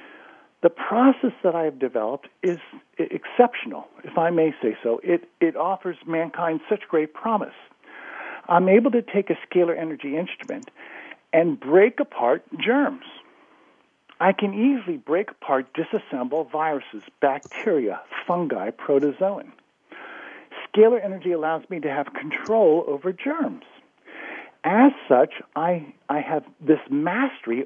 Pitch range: 150-225 Hz